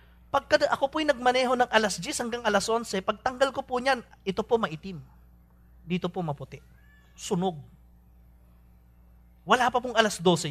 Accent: Filipino